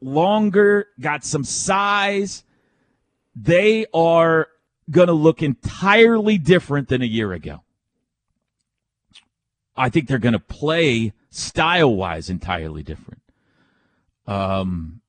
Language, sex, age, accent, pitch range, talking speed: English, male, 40-59, American, 120-160 Hz, 95 wpm